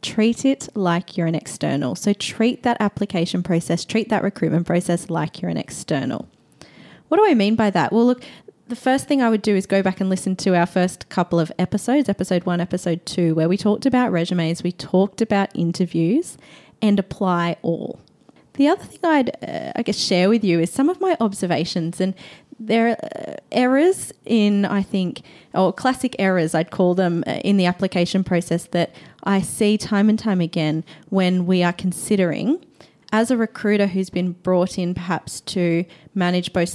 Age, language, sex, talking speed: 20-39, English, female, 185 wpm